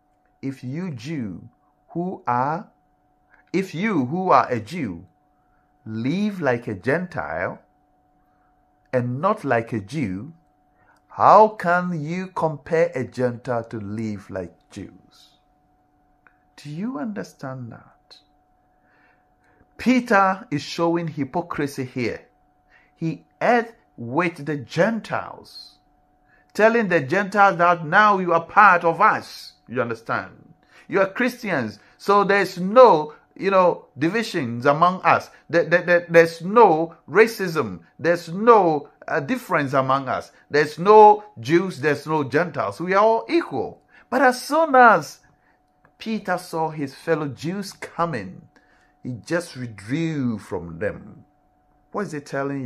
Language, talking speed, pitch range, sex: English, 120 wpm, 140-190 Hz, male